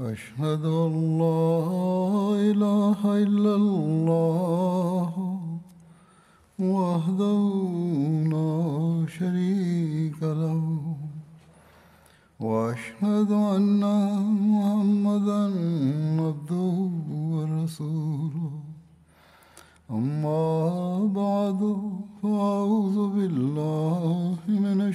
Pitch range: 155-200 Hz